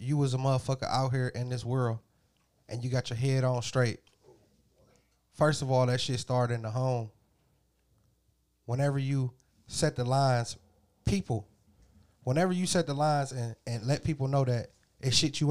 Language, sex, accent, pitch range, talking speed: English, male, American, 125-150 Hz, 175 wpm